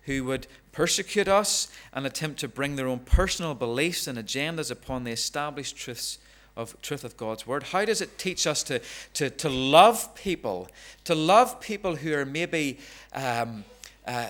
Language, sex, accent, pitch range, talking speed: English, male, British, 120-170 Hz, 170 wpm